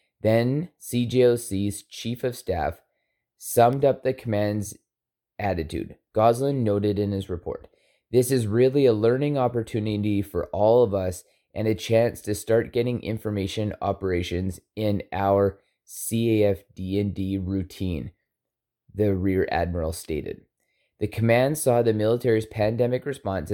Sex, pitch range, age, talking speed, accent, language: male, 95-120 Hz, 20-39, 125 wpm, American, English